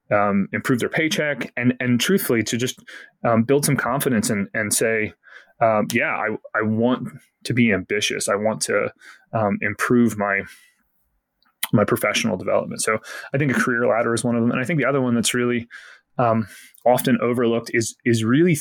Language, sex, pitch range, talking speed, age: English, male, 110-130 Hz, 185 wpm, 20-39